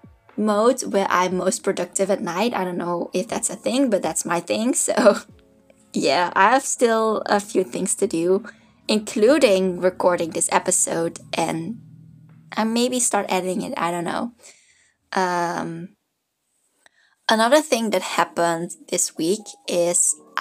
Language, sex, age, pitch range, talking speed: English, female, 20-39, 175-220 Hz, 145 wpm